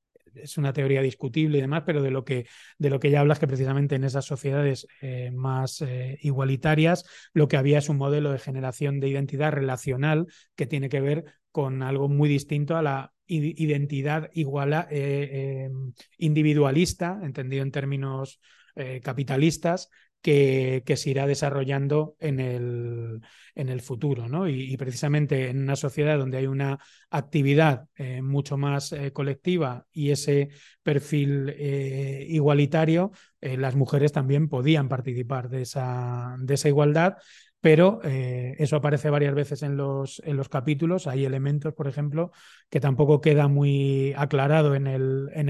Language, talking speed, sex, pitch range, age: Spanish, 155 wpm, male, 135-155 Hz, 30-49